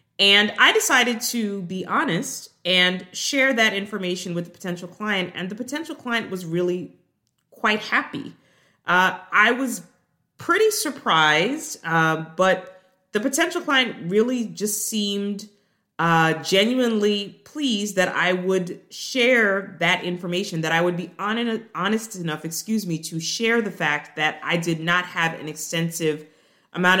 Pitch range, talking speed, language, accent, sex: 165-225 Hz, 145 wpm, English, American, female